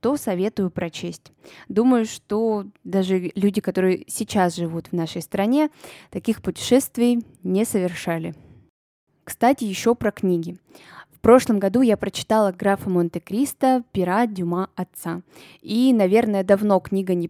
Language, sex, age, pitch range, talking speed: Russian, female, 20-39, 180-245 Hz, 125 wpm